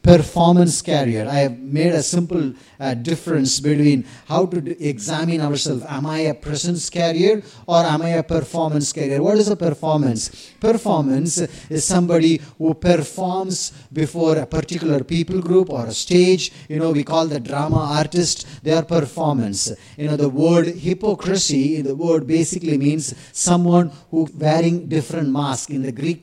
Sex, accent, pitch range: male, Indian, 150-175 Hz